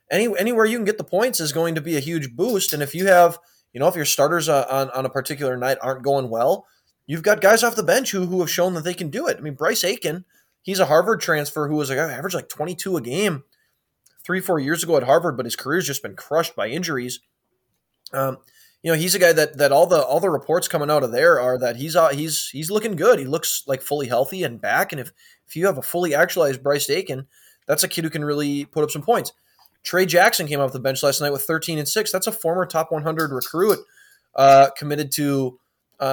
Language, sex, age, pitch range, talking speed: English, male, 20-39, 135-180 Hz, 250 wpm